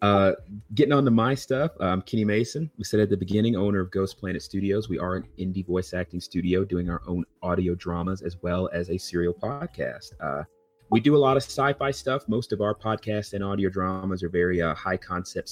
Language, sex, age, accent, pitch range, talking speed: English, male, 30-49, American, 90-105 Hz, 220 wpm